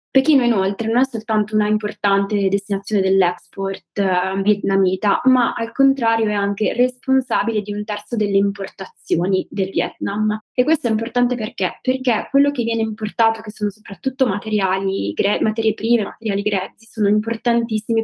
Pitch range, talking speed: 195-225 Hz, 145 wpm